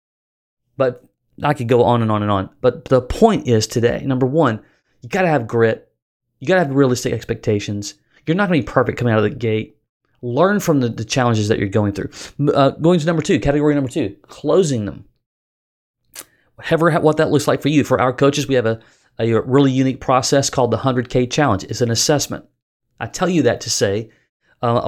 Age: 30-49